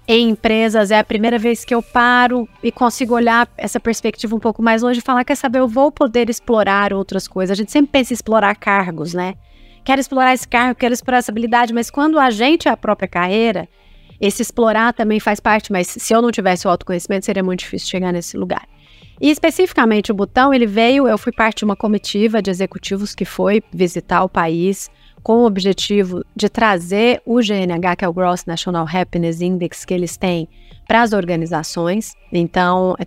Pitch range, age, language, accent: 180-235 Hz, 30-49, Portuguese, Brazilian